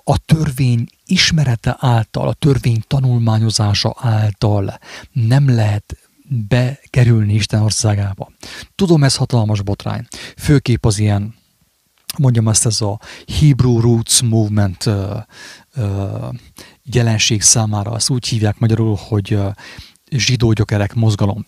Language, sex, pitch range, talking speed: English, male, 105-125 Hz, 110 wpm